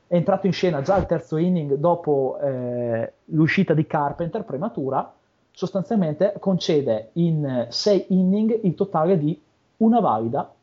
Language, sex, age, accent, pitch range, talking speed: Italian, male, 30-49, native, 140-195 Hz, 135 wpm